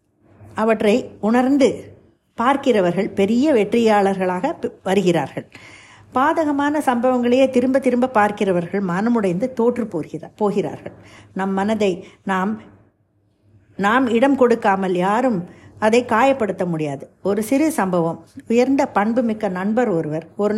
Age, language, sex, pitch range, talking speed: 50-69, Tamil, female, 185-245 Hz, 95 wpm